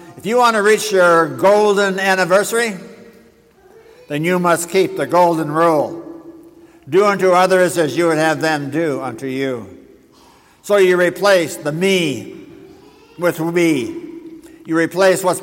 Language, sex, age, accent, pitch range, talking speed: English, male, 60-79, American, 150-190 Hz, 140 wpm